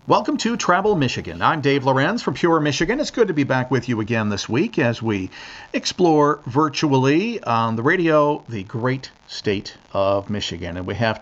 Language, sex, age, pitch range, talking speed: English, male, 50-69, 105-135 Hz, 185 wpm